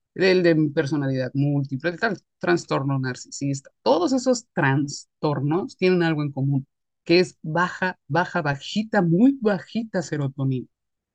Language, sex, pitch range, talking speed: English, male, 140-180 Hz, 125 wpm